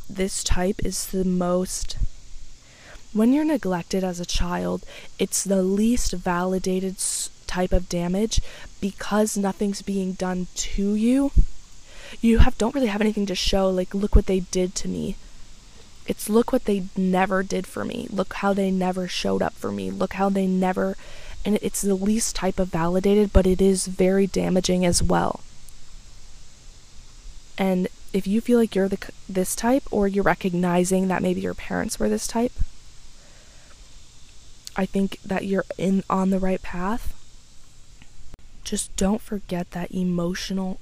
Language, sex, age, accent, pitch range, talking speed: English, female, 20-39, American, 180-200 Hz, 155 wpm